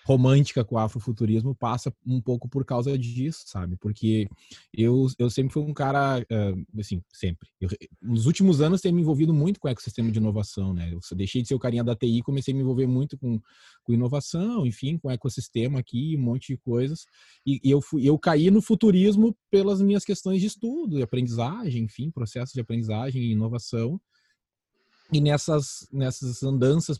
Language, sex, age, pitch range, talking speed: Portuguese, male, 20-39, 115-145 Hz, 180 wpm